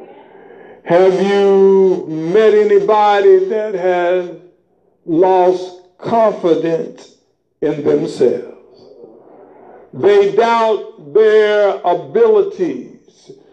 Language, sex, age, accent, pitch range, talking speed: English, male, 60-79, American, 215-320 Hz, 60 wpm